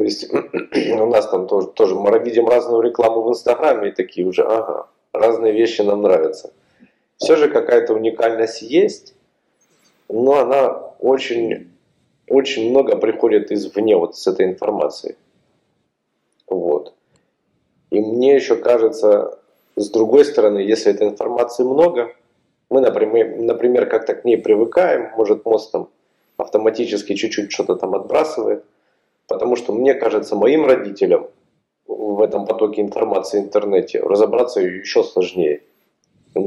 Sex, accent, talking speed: male, native, 130 wpm